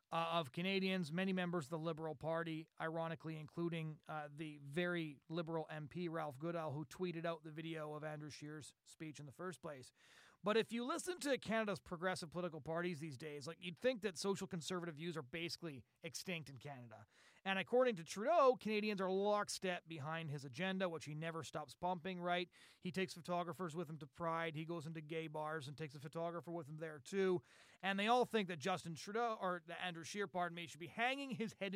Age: 30-49